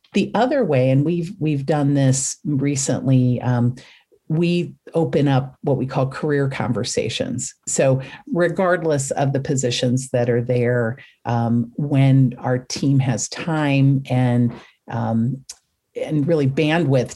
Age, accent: 50-69, American